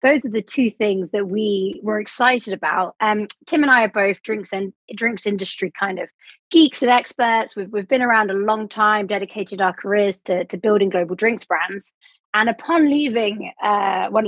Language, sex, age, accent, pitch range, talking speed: English, female, 20-39, British, 195-255 Hz, 195 wpm